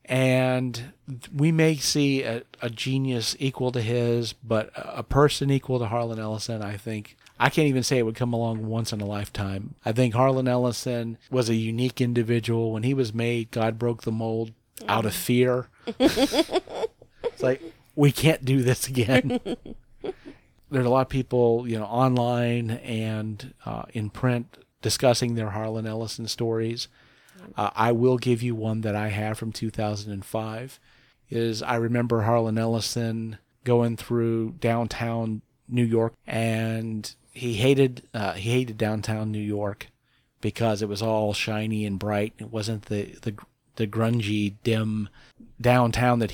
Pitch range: 110-125 Hz